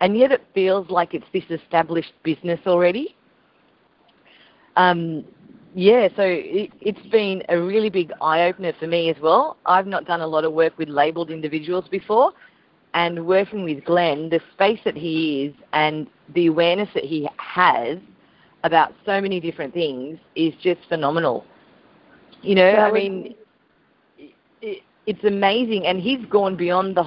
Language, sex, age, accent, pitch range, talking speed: English, female, 30-49, Australian, 160-205 Hz, 150 wpm